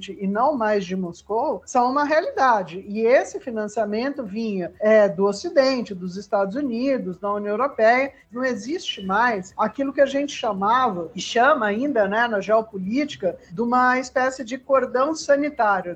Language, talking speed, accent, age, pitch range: Portuguese, 150 wpm, Brazilian, 50-69, 215-275 Hz